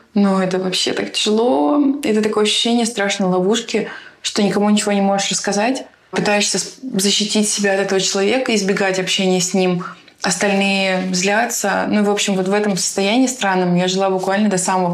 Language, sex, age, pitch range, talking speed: Russian, female, 20-39, 185-205 Hz, 165 wpm